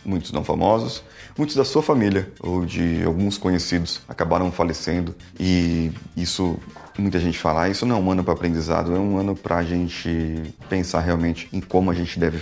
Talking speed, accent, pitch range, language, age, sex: 185 wpm, Brazilian, 85-120 Hz, Portuguese, 30-49, male